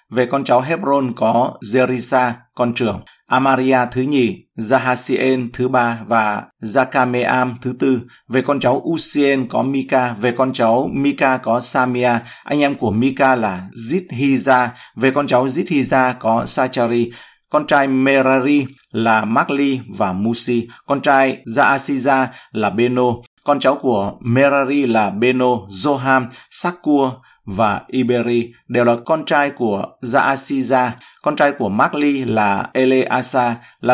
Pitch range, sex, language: 120-135 Hz, male, Vietnamese